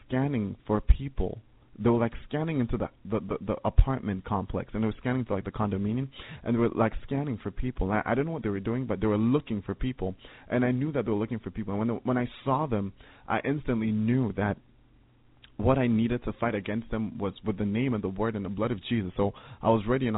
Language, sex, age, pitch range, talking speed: English, male, 30-49, 105-120 Hz, 260 wpm